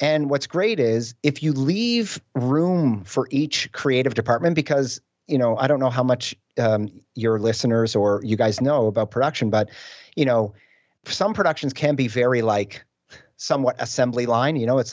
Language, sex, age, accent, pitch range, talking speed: English, male, 40-59, American, 115-145 Hz, 175 wpm